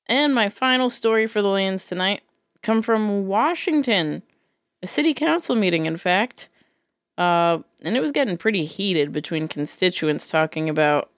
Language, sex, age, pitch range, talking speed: English, female, 20-39, 165-220 Hz, 150 wpm